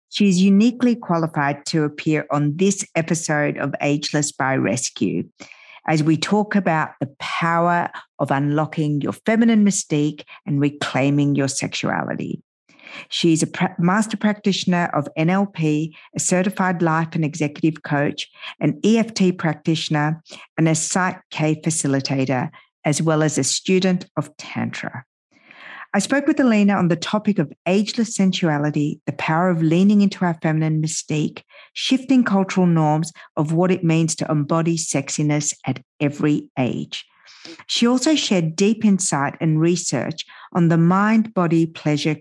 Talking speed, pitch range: 135 wpm, 150-195 Hz